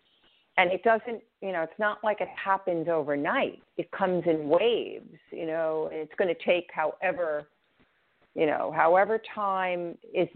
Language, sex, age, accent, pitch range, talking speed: English, female, 50-69, American, 155-190 Hz, 155 wpm